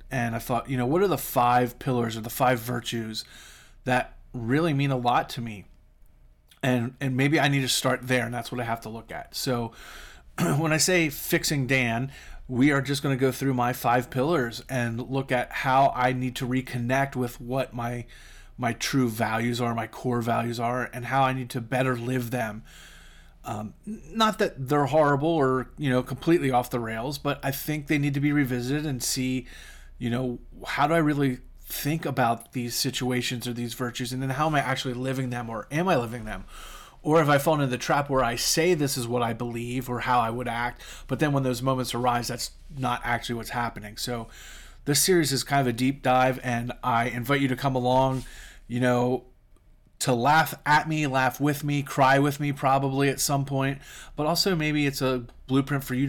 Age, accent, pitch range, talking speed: 30-49, American, 120-140 Hz, 215 wpm